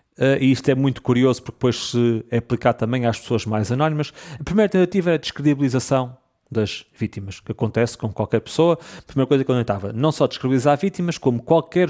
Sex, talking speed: male, 205 wpm